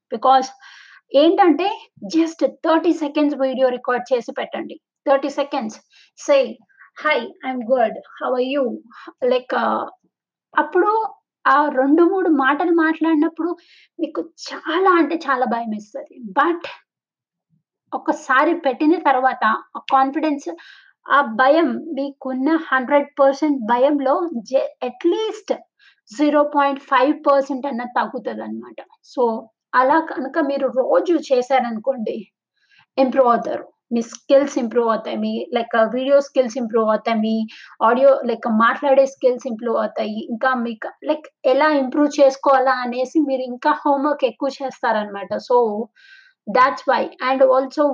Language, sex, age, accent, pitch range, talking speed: Telugu, female, 20-39, native, 250-310 Hz, 110 wpm